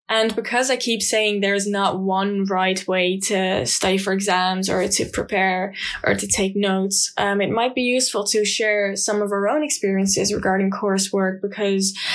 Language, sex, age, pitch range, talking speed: English, female, 10-29, 195-230 Hz, 180 wpm